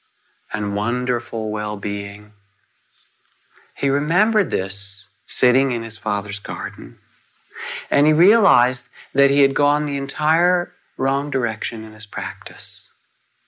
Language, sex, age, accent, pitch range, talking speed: English, male, 40-59, American, 100-130 Hz, 110 wpm